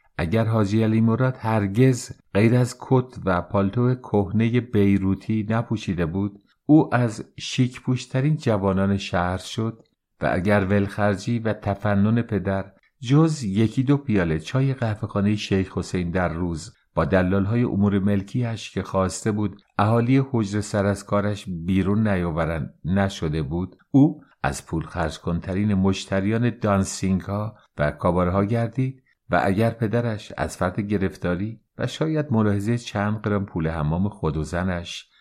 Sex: male